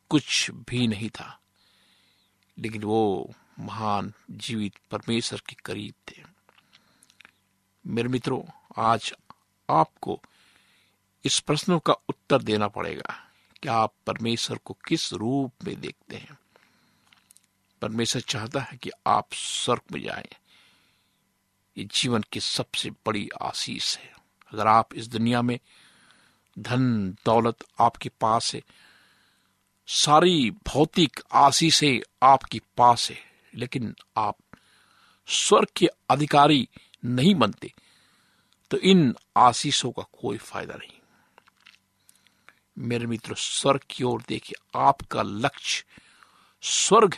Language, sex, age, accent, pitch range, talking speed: Hindi, male, 60-79, native, 105-130 Hz, 110 wpm